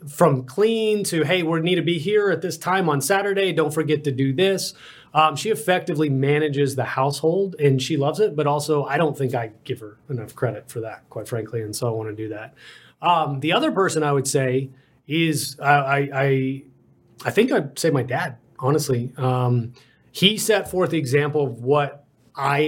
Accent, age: American, 30-49